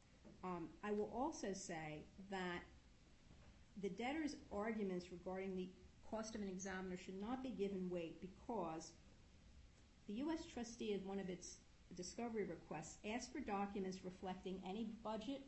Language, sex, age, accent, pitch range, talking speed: English, female, 50-69, American, 185-220 Hz, 140 wpm